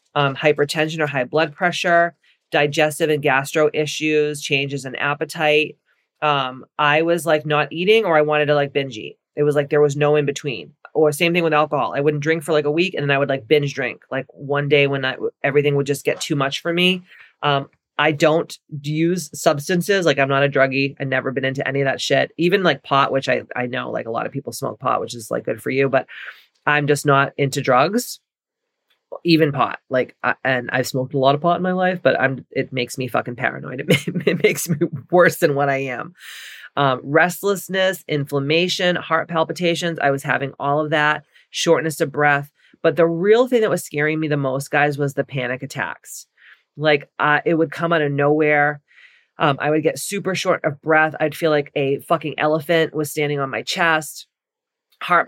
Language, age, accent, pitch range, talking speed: English, 30-49, American, 140-165 Hz, 215 wpm